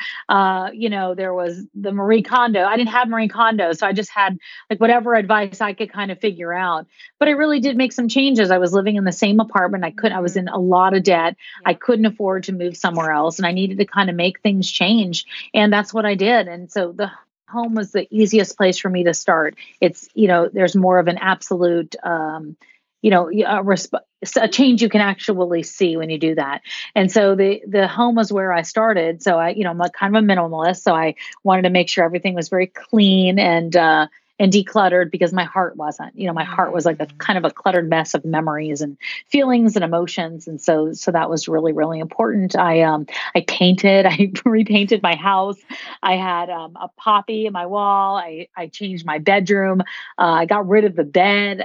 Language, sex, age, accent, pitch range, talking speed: English, female, 30-49, American, 175-220 Hz, 230 wpm